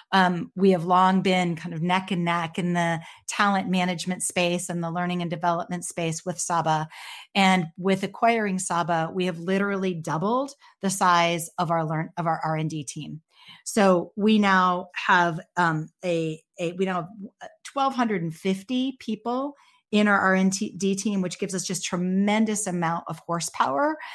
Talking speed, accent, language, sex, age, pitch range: 165 wpm, American, English, female, 40-59, 170-205 Hz